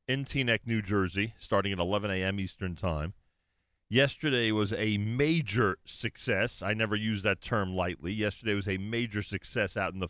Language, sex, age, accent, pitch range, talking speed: English, male, 40-59, American, 95-120 Hz, 170 wpm